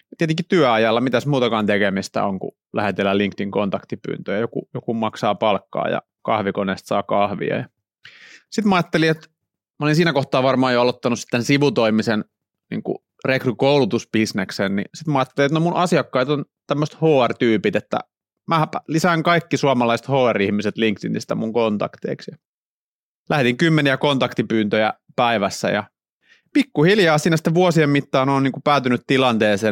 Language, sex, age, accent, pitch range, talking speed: Finnish, male, 30-49, native, 110-140 Hz, 130 wpm